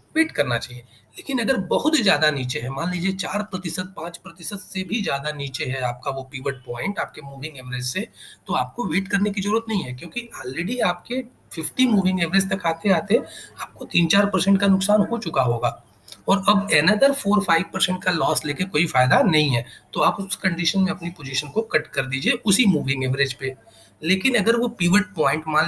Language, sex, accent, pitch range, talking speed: Hindi, male, native, 135-205 Hz, 200 wpm